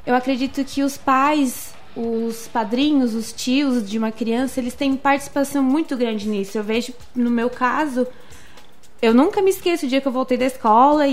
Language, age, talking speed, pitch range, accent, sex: Portuguese, 20-39, 185 wpm, 235-310 Hz, Brazilian, female